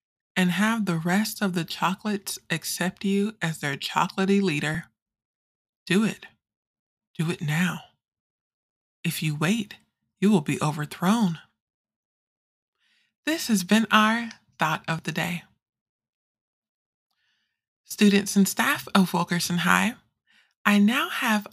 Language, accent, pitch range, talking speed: English, American, 170-205 Hz, 115 wpm